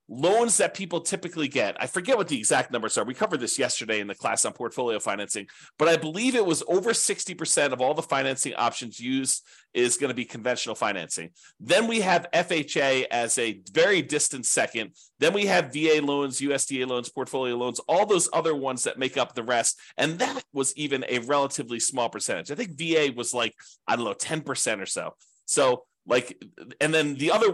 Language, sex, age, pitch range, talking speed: English, male, 30-49, 125-180 Hz, 205 wpm